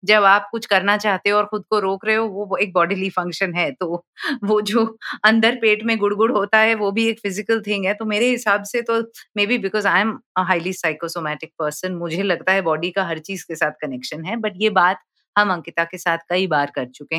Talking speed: 235 wpm